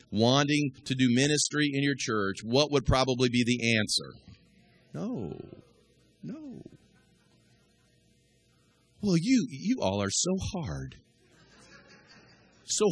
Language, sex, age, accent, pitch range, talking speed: English, male, 40-59, American, 115-170 Hz, 105 wpm